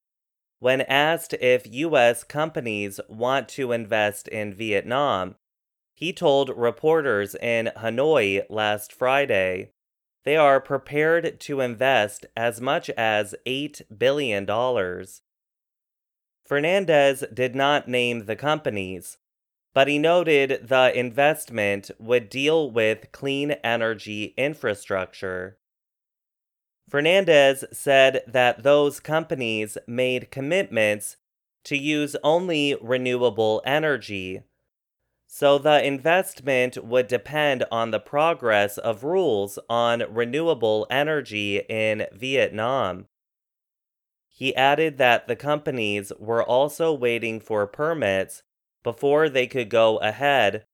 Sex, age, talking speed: male, 20-39, 100 wpm